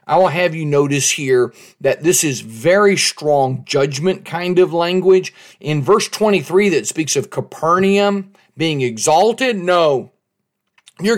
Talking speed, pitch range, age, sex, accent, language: 140 wpm, 140-190 Hz, 40-59, male, American, English